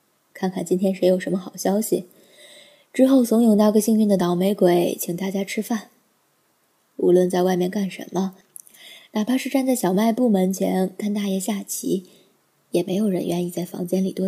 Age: 20-39